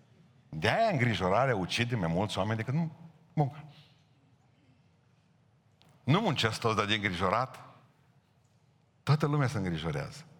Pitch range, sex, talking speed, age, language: 110-145 Hz, male, 105 wpm, 50-69, Romanian